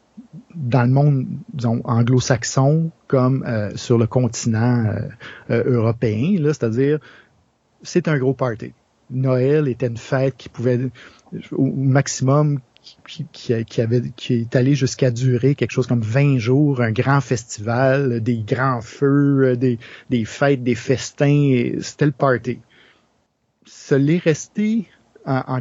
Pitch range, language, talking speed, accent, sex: 125-150 Hz, French, 145 wpm, Canadian, male